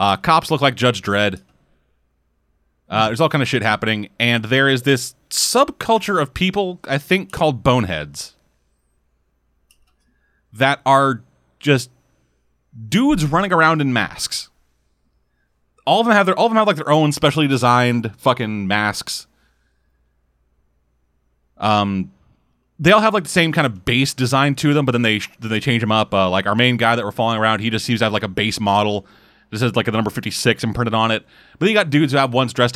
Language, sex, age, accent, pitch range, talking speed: English, male, 30-49, American, 90-135 Hz, 190 wpm